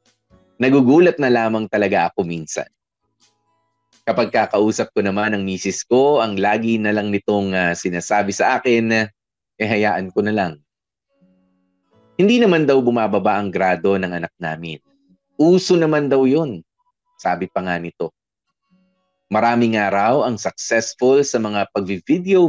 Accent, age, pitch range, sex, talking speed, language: native, 20-39, 95-150 Hz, male, 140 wpm, Filipino